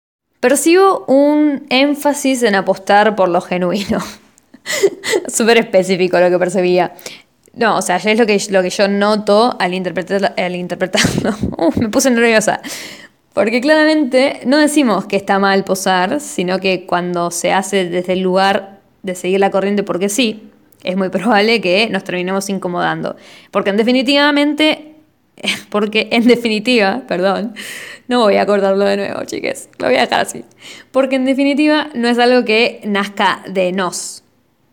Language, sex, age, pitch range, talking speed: Spanish, female, 20-39, 190-245 Hz, 150 wpm